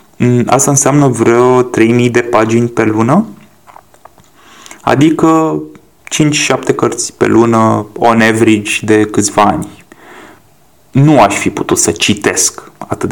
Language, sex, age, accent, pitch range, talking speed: Romanian, male, 20-39, native, 110-130 Hz, 115 wpm